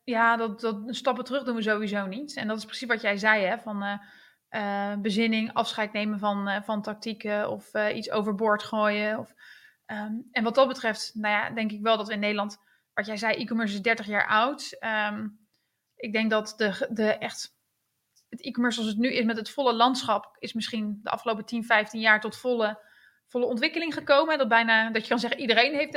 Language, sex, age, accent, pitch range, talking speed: Dutch, female, 20-39, Dutch, 220-255 Hz, 215 wpm